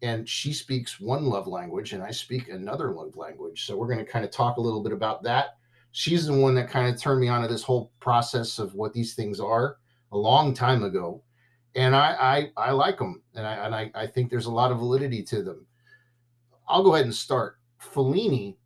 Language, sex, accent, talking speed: English, male, American, 230 wpm